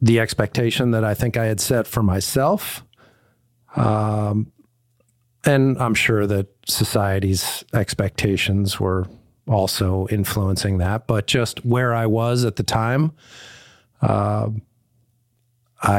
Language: English